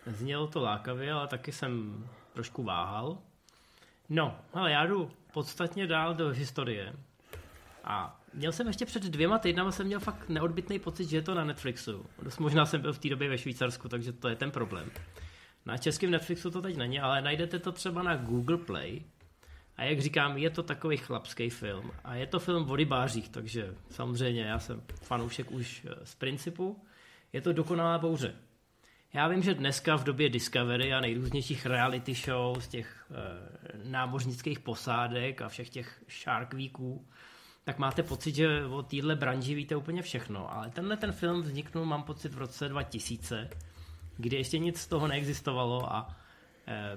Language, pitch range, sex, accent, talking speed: Czech, 120-160 Hz, male, native, 170 wpm